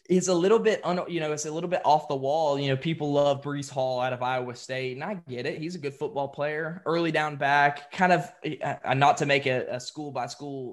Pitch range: 130-155 Hz